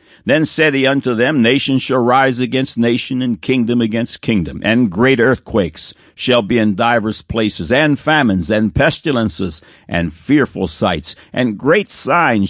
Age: 60-79